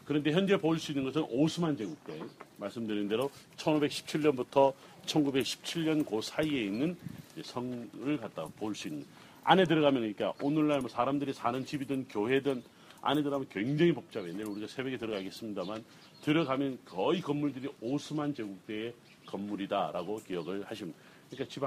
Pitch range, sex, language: 120-155 Hz, male, Korean